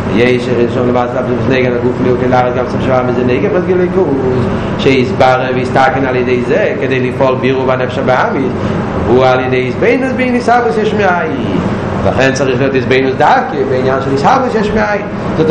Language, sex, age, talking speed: Hebrew, male, 30-49, 160 wpm